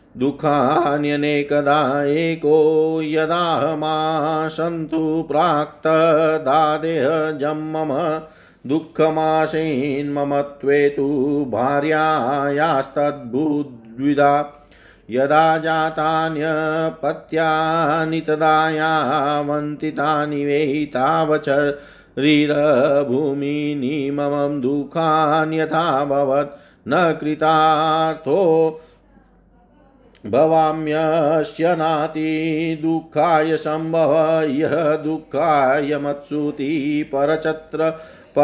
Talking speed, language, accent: 35 wpm, Hindi, native